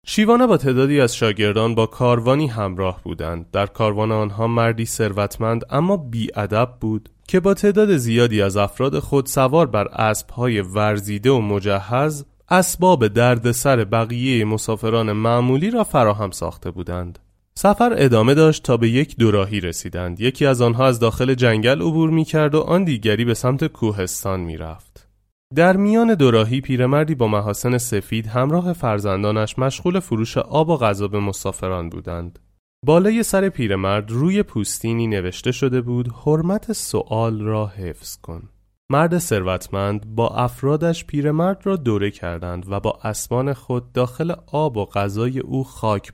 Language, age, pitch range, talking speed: Persian, 30-49, 100-135 Hz, 145 wpm